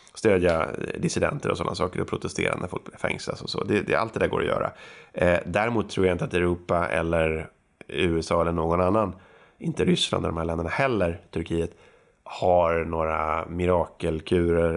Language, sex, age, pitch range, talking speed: Swedish, male, 30-49, 85-95 Hz, 180 wpm